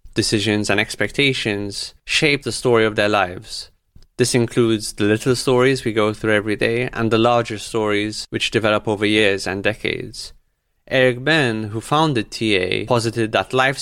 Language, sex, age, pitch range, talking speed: English, male, 20-39, 105-125 Hz, 160 wpm